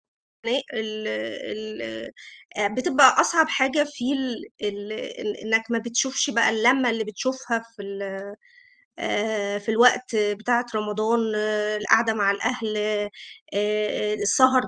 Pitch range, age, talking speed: 215-255 Hz, 20-39, 100 wpm